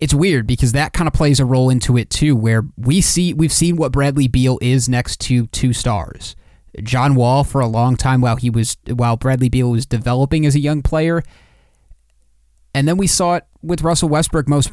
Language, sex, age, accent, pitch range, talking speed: English, male, 30-49, American, 115-140 Hz, 210 wpm